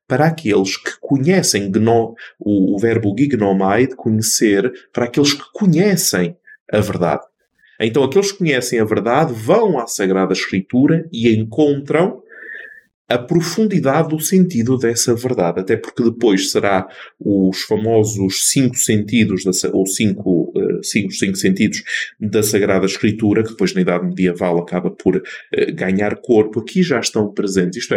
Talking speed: 145 wpm